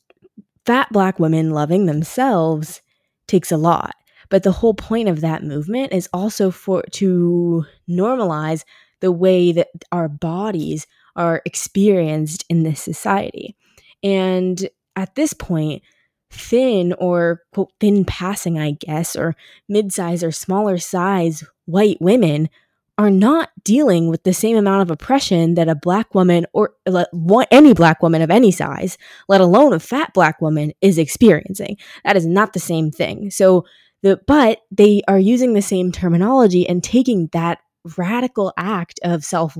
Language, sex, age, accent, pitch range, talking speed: English, female, 20-39, American, 165-205 Hz, 150 wpm